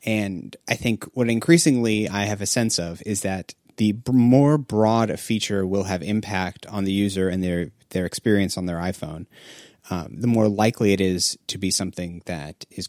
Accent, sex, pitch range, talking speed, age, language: American, male, 95-120 Hz, 190 wpm, 30-49, English